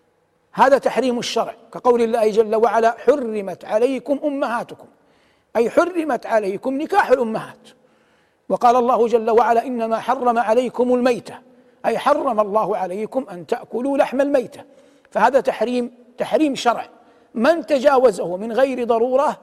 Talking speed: 125 wpm